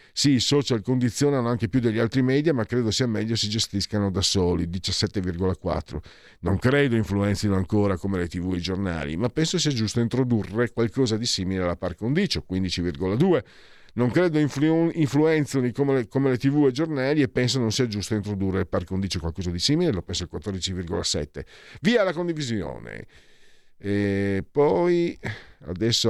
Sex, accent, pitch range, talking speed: male, native, 95-130 Hz, 165 wpm